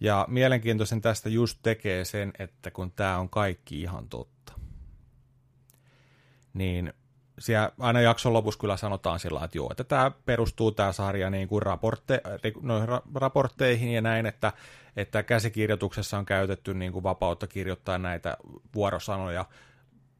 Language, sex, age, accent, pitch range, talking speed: Finnish, male, 30-49, native, 100-130 Hz, 130 wpm